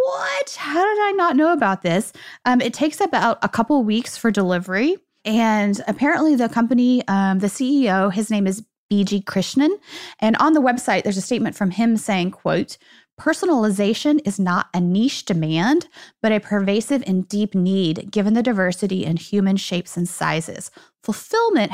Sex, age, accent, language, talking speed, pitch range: female, 20-39, American, English, 170 wpm, 195-250 Hz